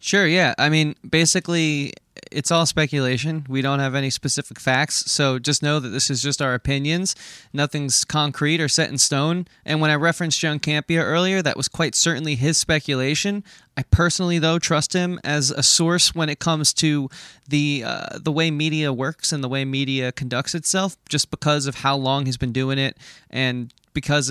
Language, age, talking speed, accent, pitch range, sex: English, 20-39, 190 wpm, American, 135-160 Hz, male